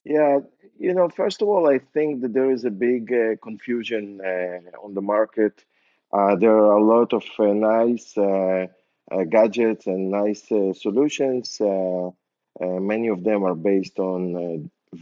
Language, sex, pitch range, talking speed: English, male, 100-125 Hz, 170 wpm